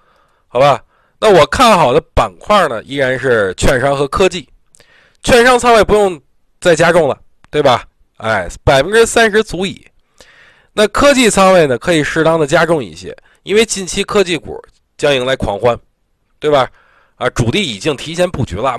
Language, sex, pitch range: Chinese, male, 125-195 Hz